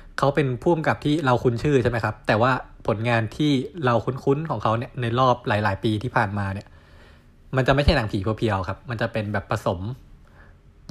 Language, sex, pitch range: Thai, male, 100-130 Hz